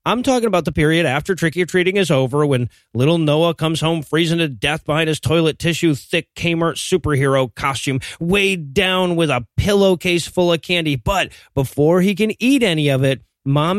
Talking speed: 185 wpm